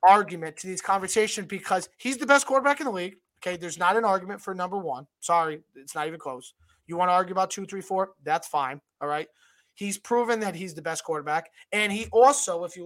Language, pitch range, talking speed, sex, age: English, 170-220 Hz, 230 wpm, male, 30-49